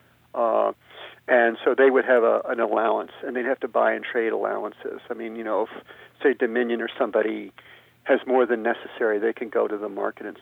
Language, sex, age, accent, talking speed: English, male, 50-69, American, 215 wpm